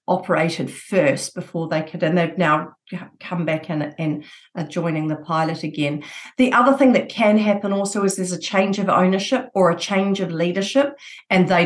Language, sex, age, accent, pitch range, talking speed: English, female, 50-69, Australian, 170-220 Hz, 190 wpm